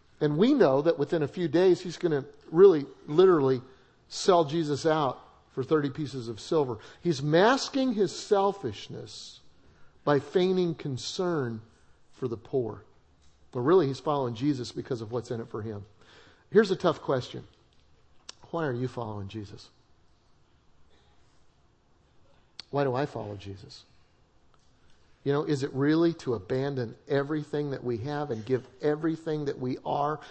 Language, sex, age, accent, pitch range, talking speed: English, male, 50-69, American, 120-155 Hz, 145 wpm